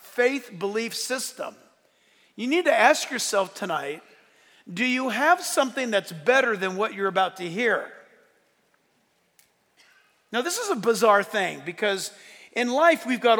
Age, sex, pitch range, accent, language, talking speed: 50-69, male, 180-260 Hz, American, English, 145 wpm